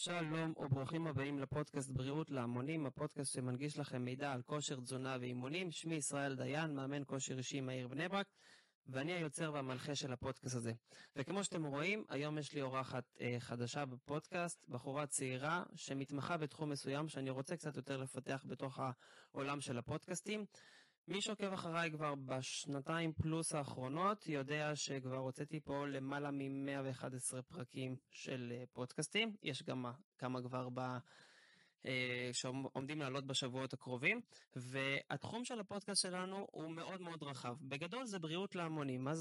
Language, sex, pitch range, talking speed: Hebrew, male, 135-165 Hz, 140 wpm